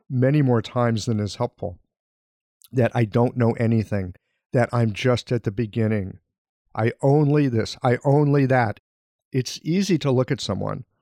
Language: English